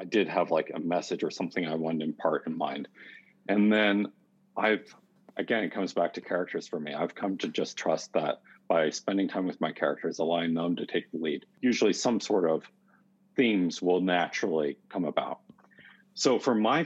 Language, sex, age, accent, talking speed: English, male, 40-59, American, 195 wpm